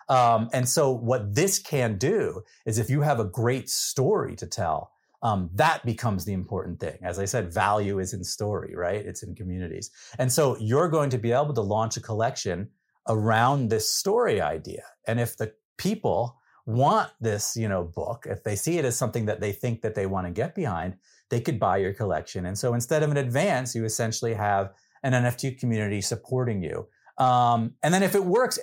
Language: English